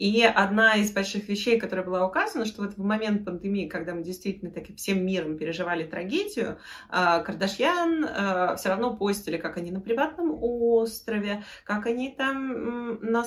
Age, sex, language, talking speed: 20-39, female, Russian, 155 wpm